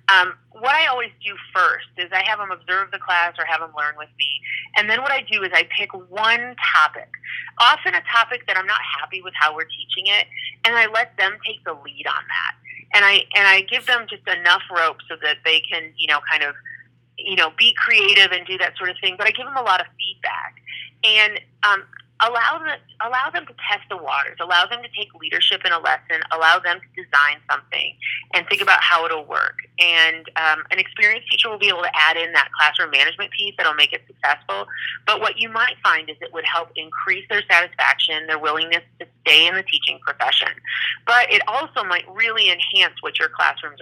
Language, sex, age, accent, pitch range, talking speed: English, female, 30-49, American, 160-210 Hz, 225 wpm